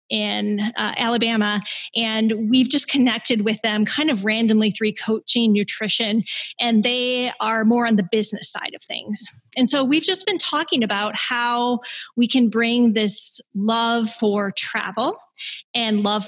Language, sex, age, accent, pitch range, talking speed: English, female, 20-39, American, 210-245 Hz, 155 wpm